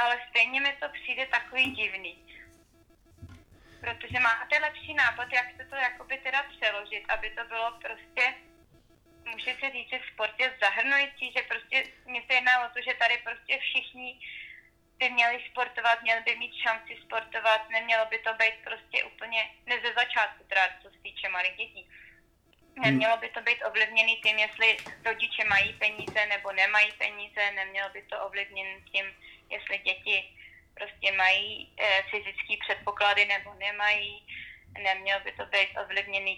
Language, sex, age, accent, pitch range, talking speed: Czech, female, 20-39, native, 200-245 Hz, 150 wpm